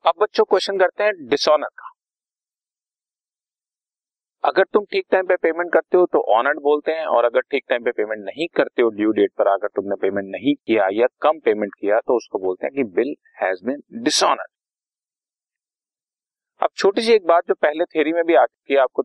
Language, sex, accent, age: Hindi, male, native, 40-59